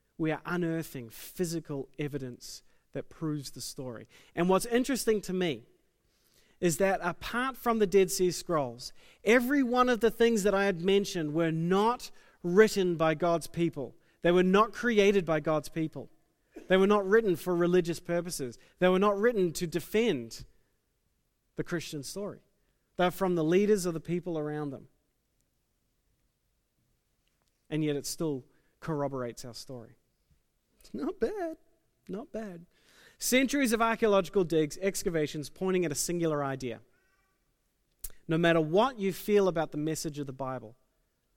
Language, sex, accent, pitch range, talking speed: English, male, Australian, 145-200 Hz, 145 wpm